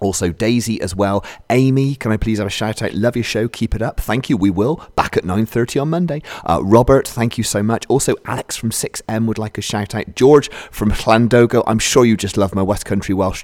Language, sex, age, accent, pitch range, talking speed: English, male, 30-49, British, 90-110 Hz, 250 wpm